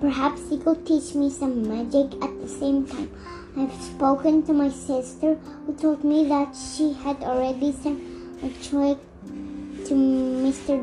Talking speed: 160 wpm